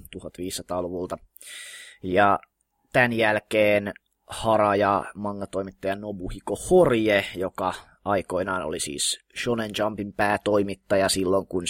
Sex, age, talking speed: male, 20-39, 85 wpm